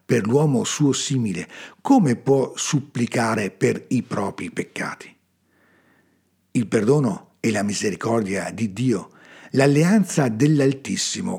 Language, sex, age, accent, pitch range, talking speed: Italian, male, 50-69, native, 120-185 Hz, 105 wpm